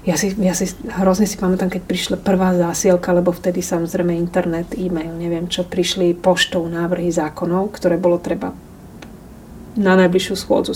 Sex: female